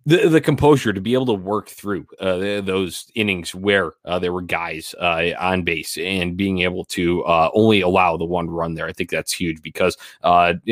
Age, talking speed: 20-39, 215 wpm